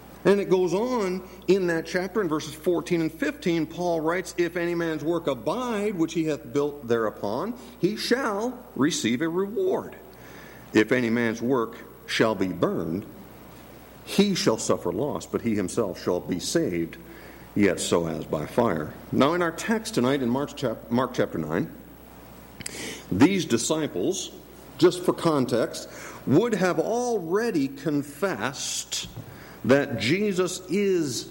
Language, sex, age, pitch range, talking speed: English, male, 50-69, 120-180 Hz, 140 wpm